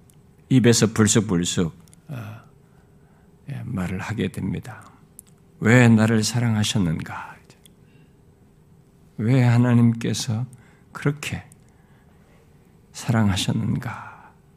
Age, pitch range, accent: 50-69, 95-130 Hz, native